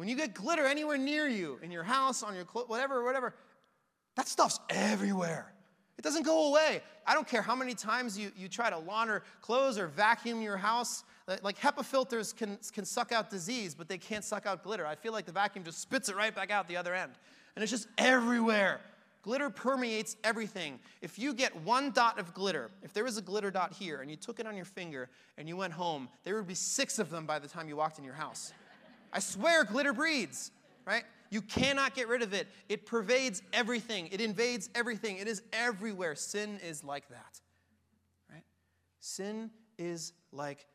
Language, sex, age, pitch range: English, male, 30-49, 175-230 Hz